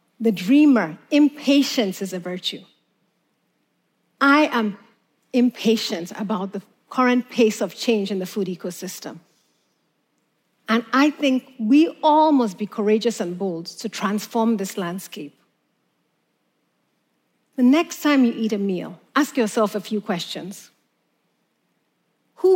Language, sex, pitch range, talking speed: English, female, 200-270 Hz, 120 wpm